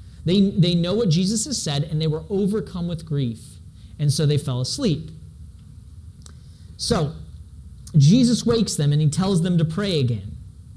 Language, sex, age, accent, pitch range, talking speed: English, male, 30-49, American, 130-195 Hz, 160 wpm